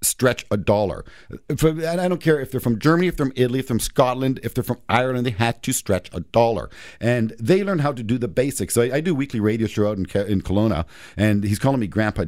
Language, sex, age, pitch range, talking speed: English, male, 50-69, 100-145 Hz, 250 wpm